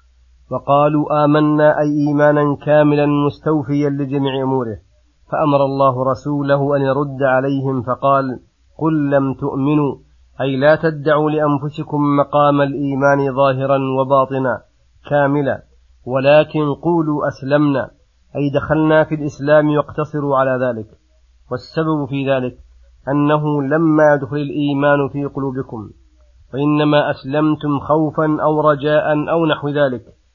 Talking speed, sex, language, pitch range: 105 wpm, male, Arabic, 135-150 Hz